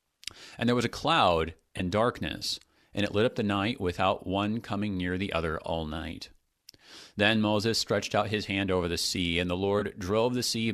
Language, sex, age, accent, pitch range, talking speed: English, male, 40-59, American, 90-110 Hz, 200 wpm